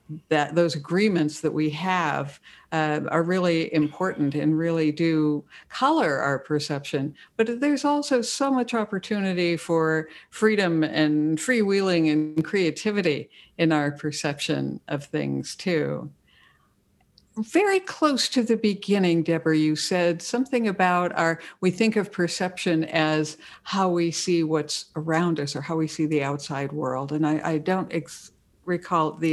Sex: female